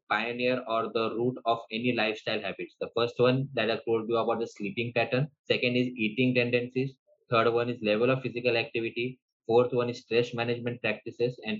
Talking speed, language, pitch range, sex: 190 wpm, English, 110-125 Hz, male